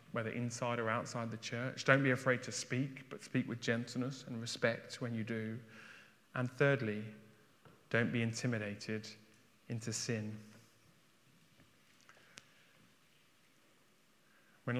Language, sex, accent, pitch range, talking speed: English, male, British, 110-125 Hz, 115 wpm